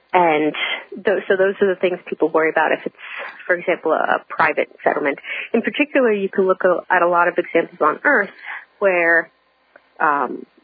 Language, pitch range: English, 175-230 Hz